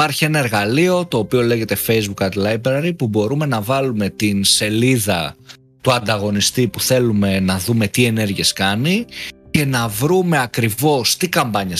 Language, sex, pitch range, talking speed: Greek, male, 105-140 Hz, 155 wpm